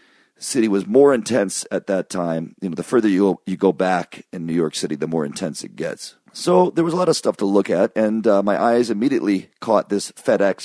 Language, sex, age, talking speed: English, male, 40-59, 240 wpm